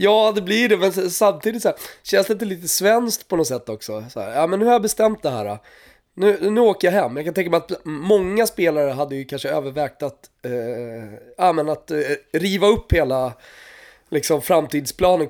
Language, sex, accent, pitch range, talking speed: Swedish, male, native, 135-195 Hz, 210 wpm